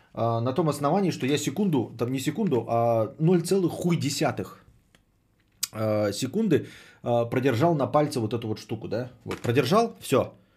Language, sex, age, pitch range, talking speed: Bulgarian, male, 30-49, 110-140 Hz, 140 wpm